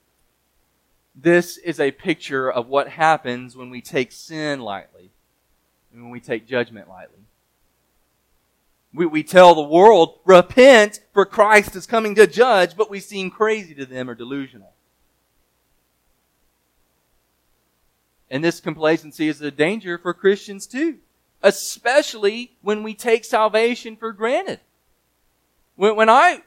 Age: 30-49